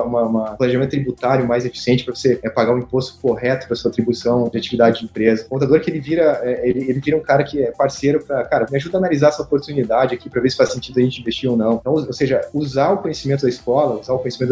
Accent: Brazilian